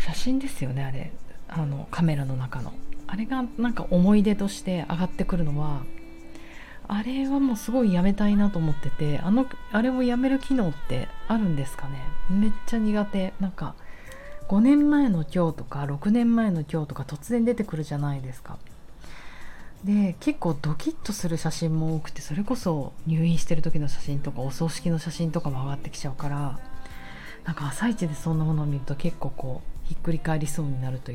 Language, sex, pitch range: Japanese, female, 140-195 Hz